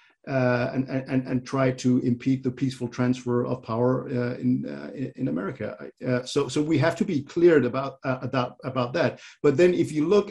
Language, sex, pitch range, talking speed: English, male, 125-145 Hz, 205 wpm